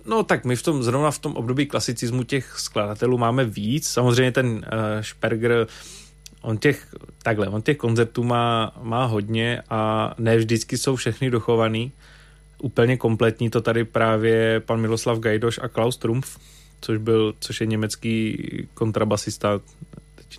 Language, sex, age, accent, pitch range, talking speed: Czech, male, 20-39, native, 110-125 Hz, 140 wpm